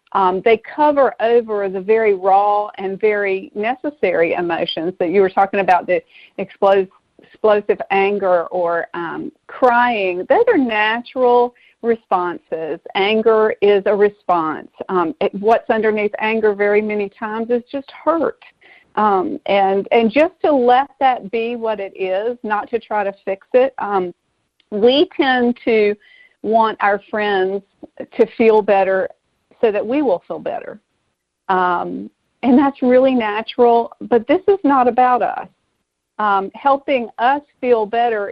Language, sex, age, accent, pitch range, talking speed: English, female, 40-59, American, 195-250 Hz, 140 wpm